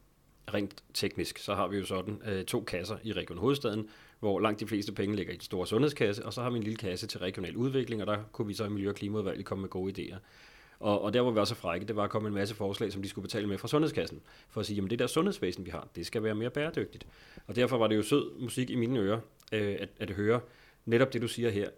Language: Danish